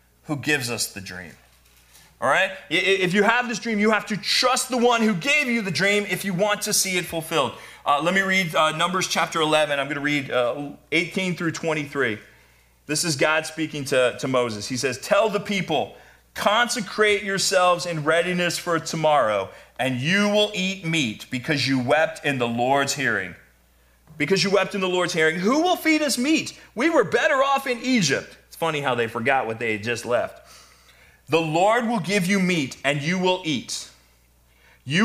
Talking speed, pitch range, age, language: 195 wpm, 125-195 Hz, 40-59, English